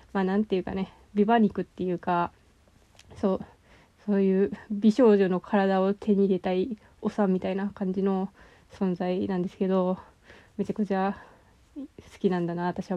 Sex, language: female, Japanese